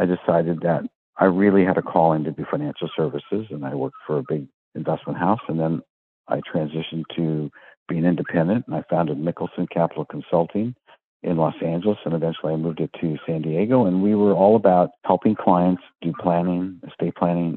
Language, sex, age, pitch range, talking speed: English, male, 50-69, 80-95 Hz, 190 wpm